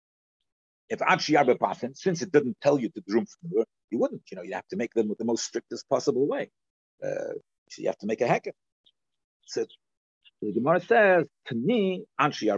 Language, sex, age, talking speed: English, male, 50-69, 210 wpm